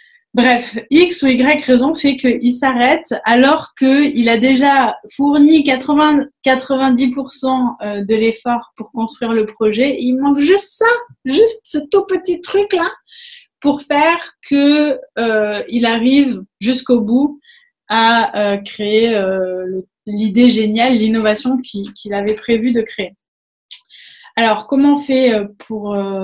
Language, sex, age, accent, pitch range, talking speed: French, female, 20-39, French, 215-280 Hz, 135 wpm